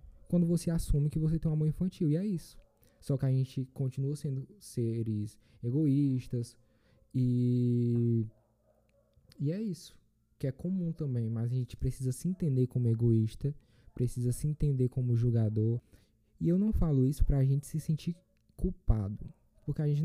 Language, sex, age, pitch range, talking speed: Portuguese, male, 10-29, 115-150 Hz, 165 wpm